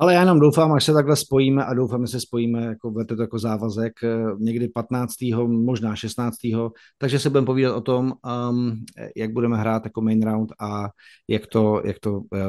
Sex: male